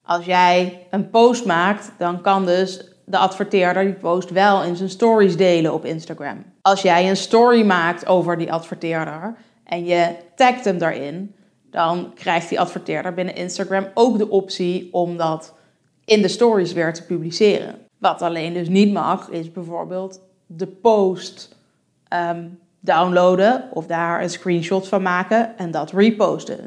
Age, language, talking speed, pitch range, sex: 20-39, Dutch, 155 wpm, 175-225 Hz, female